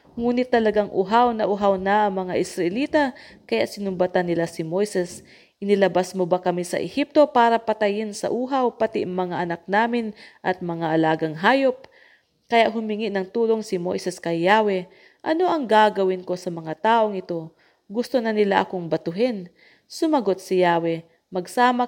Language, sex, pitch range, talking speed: English, female, 175-220 Hz, 160 wpm